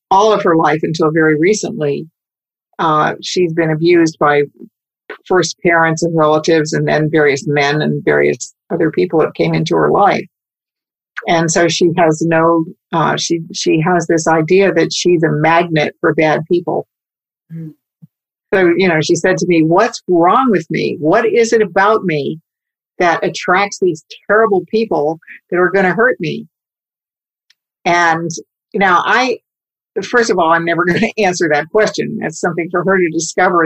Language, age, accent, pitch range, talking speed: English, 50-69, American, 160-190 Hz, 165 wpm